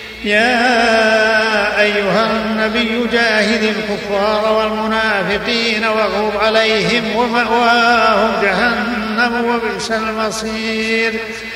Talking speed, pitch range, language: 60 wpm, 215-225 Hz, Arabic